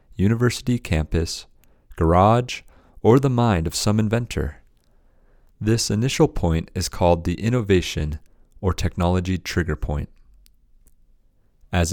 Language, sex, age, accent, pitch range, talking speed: English, male, 40-59, American, 85-105 Hz, 105 wpm